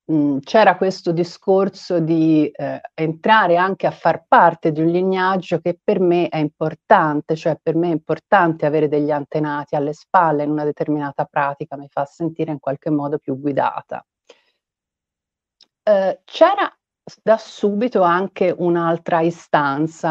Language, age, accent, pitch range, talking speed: Italian, 40-59, native, 150-200 Hz, 140 wpm